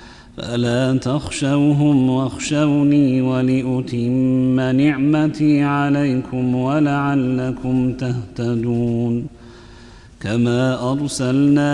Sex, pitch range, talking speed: male, 125-145 Hz, 50 wpm